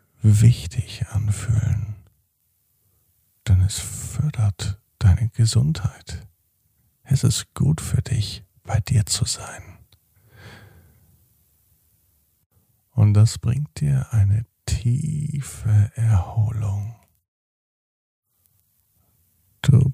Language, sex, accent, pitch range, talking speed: German, male, German, 100-120 Hz, 70 wpm